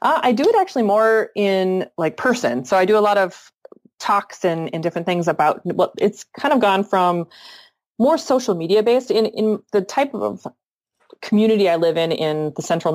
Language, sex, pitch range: English, female, 160-205 Hz